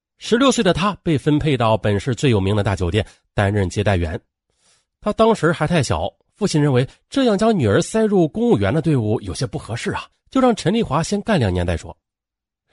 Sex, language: male, Chinese